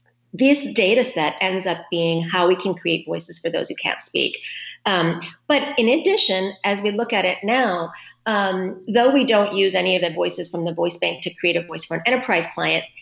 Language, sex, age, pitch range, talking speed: English, female, 30-49, 170-225 Hz, 215 wpm